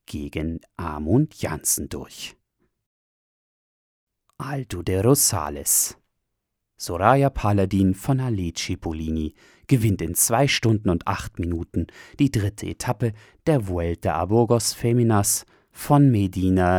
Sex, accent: male, German